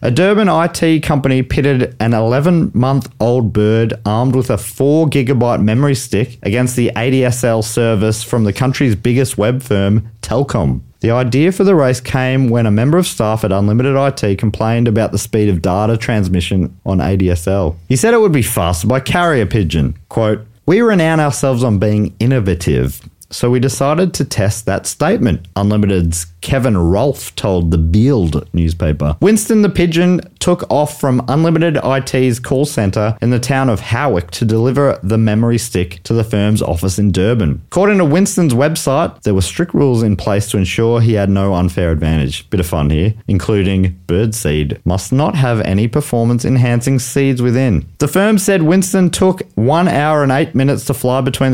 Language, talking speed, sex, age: English, 175 wpm, male, 30-49